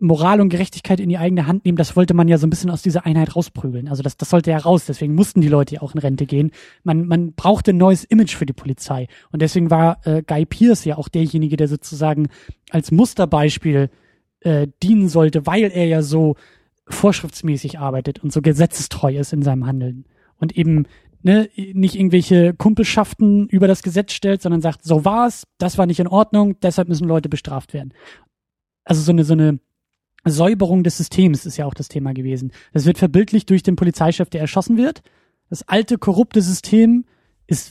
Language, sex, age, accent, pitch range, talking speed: German, male, 20-39, German, 155-190 Hz, 195 wpm